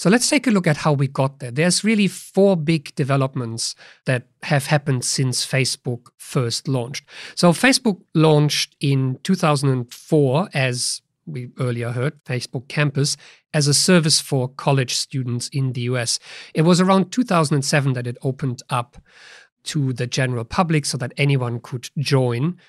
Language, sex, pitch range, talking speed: English, male, 130-160 Hz, 155 wpm